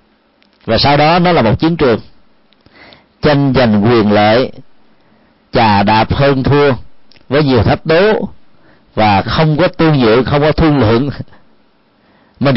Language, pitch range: Vietnamese, 115-155 Hz